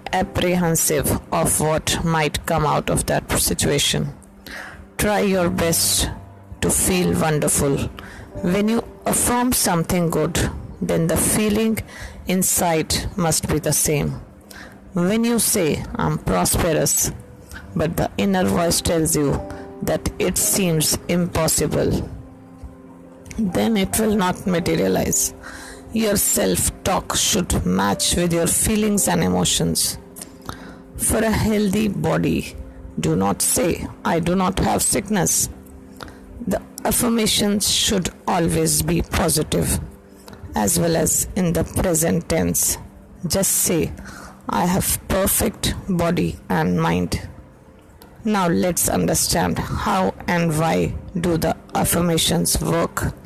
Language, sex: English, female